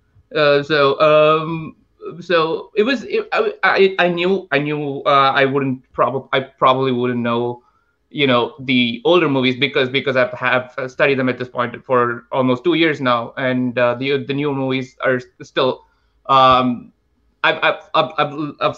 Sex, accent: male, Indian